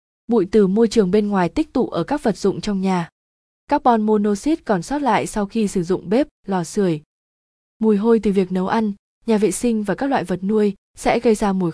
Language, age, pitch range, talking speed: Vietnamese, 20-39, 185-230 Hz, 225 wpm